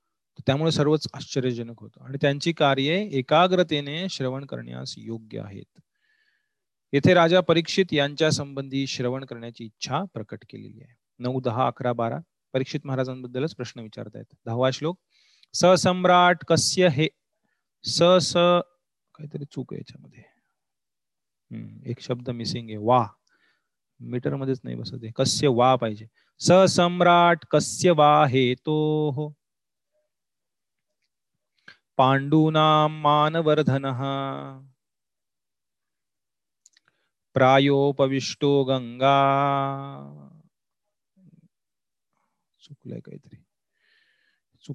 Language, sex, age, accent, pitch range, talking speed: Marathi, male, 30-49, native, 125-155 Hz, 70 wpm